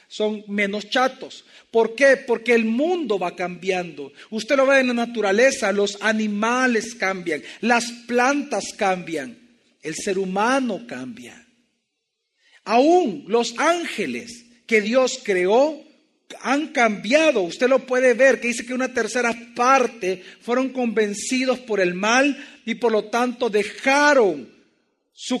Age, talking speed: 50-69, 130 wpm